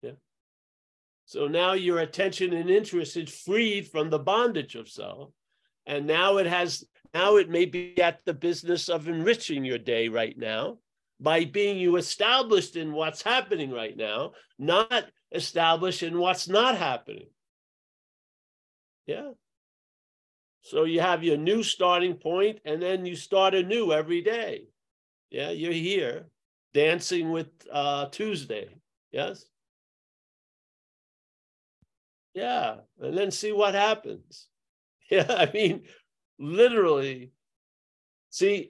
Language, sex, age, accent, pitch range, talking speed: English, male, 50-69, American, 155-205 Hz, 120 wpm